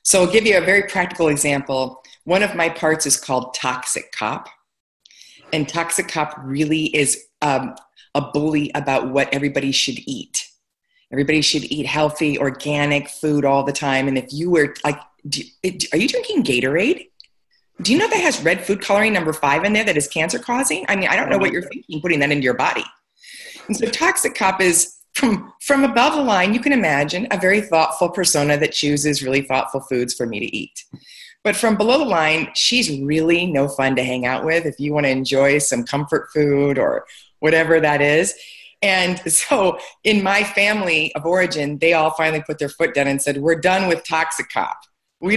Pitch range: 145-205 Hz